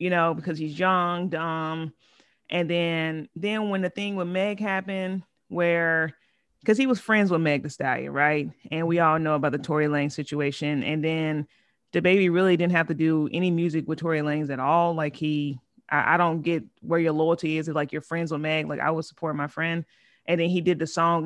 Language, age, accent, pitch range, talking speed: English, 30-49, American, 155-185 Hz, 220 wpm